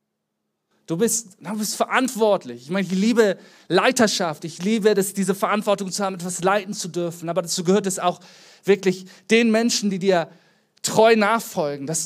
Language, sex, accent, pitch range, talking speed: German, male, German, 160-210 Hz, 170 wpm